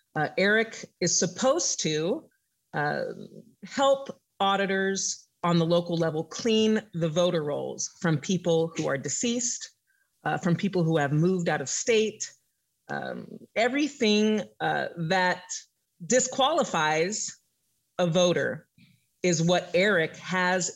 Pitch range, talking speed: 160-215 Hz, 120 wpm